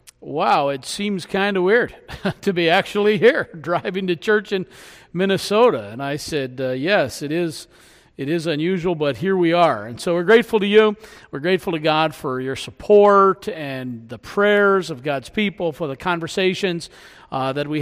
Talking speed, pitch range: 180 wpm, 155-195 Hz